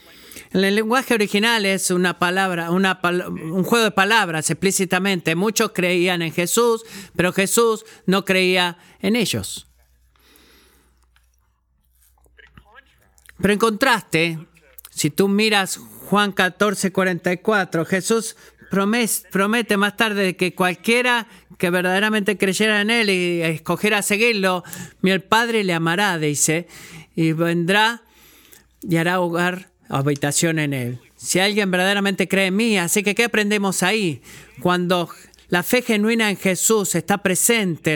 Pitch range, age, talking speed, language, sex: 170-205 Hz, 50-69, 125 wpm, Spanish, male